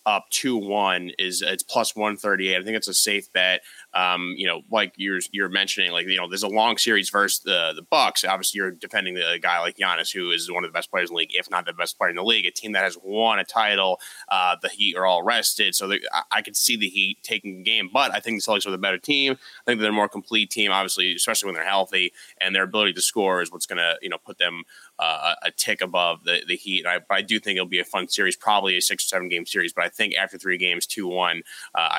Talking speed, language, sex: 275 wpm, English, male